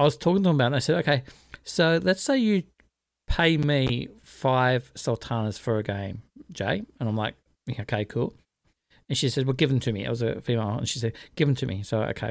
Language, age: English, 50-69